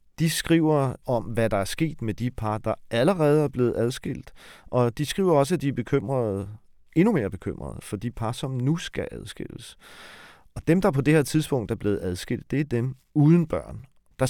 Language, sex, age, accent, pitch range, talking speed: Danish, male, 40-59, native, 110-145 Hz, 200 wpm